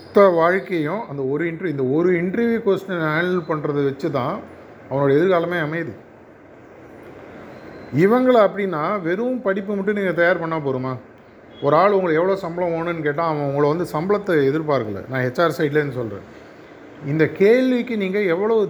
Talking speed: 145 wpm